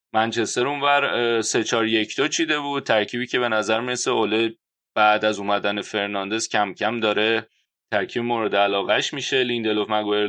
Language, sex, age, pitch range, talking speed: Persian, male, 30-49, 105-115 Hz, 140 wpm